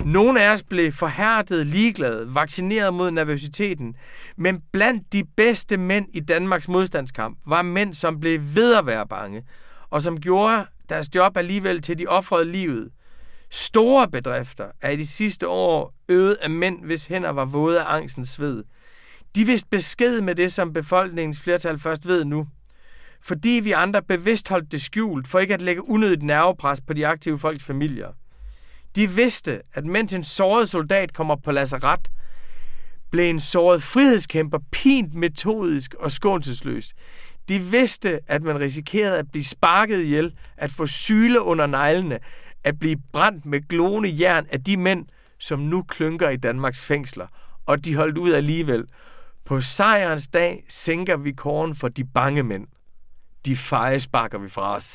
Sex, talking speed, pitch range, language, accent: male, 160 wpm, 145-190 Hz, Danish, native